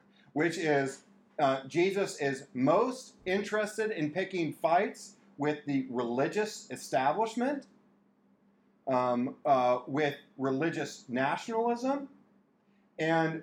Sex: male